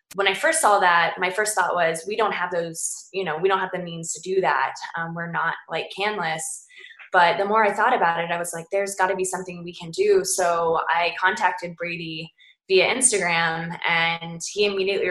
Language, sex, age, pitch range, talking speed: English, female, 20-39, 170-200 Hz, 220 wpm